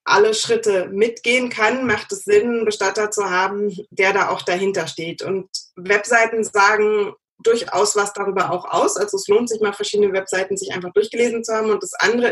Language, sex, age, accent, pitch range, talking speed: German, female, 20-39, German, 190-235 Hz, 190 wpm